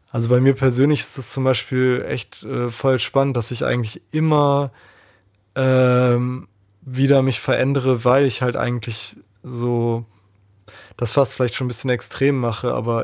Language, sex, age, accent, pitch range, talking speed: German, male, 20-39, German, 115-135 Hz, 155 wpm